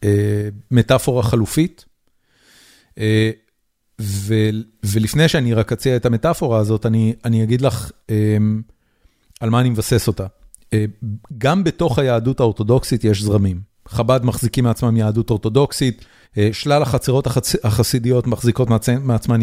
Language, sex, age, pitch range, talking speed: Hebrew, male, 40-59, 110-145 Hz, 125 wpm